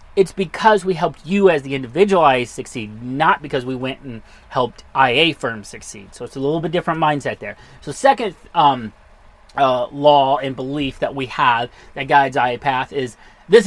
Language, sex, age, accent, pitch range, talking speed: English, male, 30-49, American, 140-185 Hz, 190 wpm